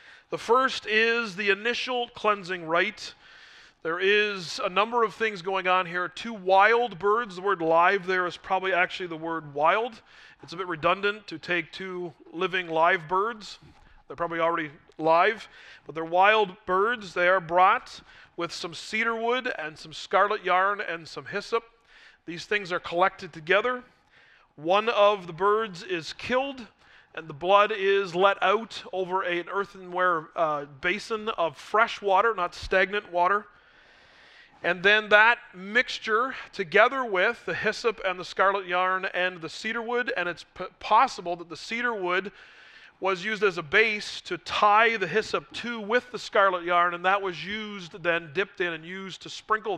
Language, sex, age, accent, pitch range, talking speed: English, male, 40-59, American, 175-210 Hz, 165 wpm